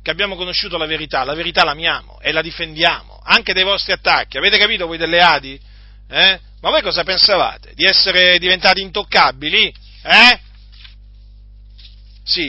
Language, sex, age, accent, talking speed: Italian, male, 50-69, native, 155 wpm